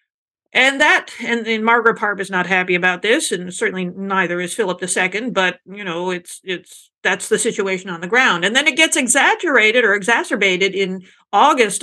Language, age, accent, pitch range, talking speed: English, 50-69, American, 185-235 Hz, 190 wpm